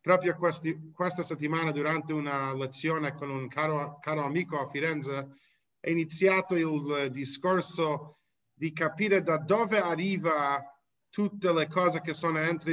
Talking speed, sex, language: 135 wpm, male, Italian